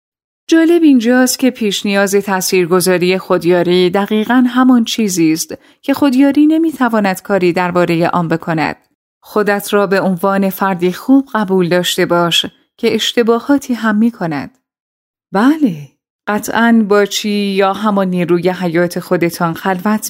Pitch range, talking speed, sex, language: 180-240 Hz, 125 wpm, female, Persian